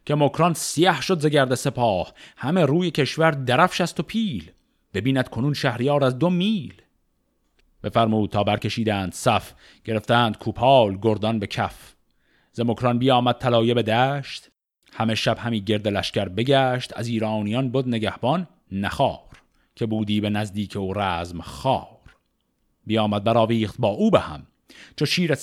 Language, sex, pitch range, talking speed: Persian, male, 105-140 Hz, 140 wpm